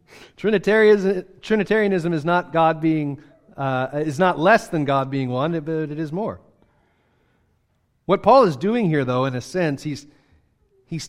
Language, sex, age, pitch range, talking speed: English, male, 40-59, 135-185 Hz, 155 wpm